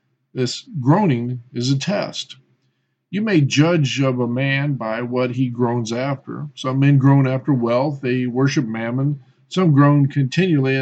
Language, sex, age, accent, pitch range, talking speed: English, male, 50-69, American, 115-145 Hz, 150 wpm